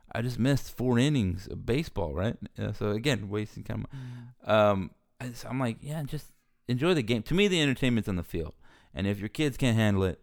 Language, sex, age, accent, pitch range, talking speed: English, male, 30-49, American, 95-120 Hz, 215 wpm